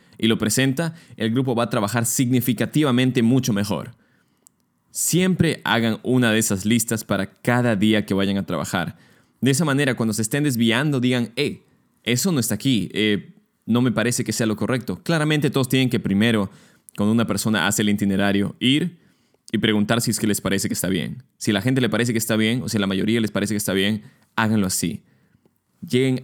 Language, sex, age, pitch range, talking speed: Spanish, male, 20-39, 105-125 Hz, 200 wpm